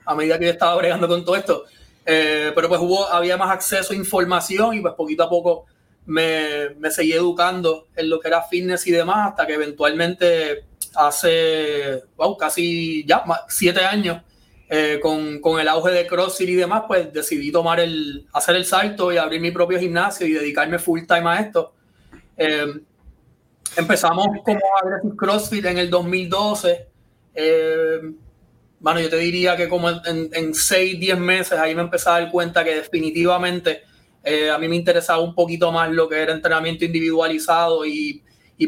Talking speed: 175 wpm